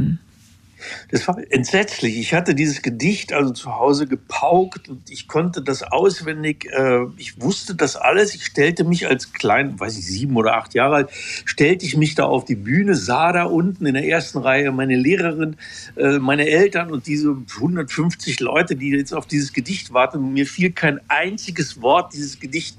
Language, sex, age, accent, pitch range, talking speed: German, male, 60-79, German, 130-170 Hz, 180 wpm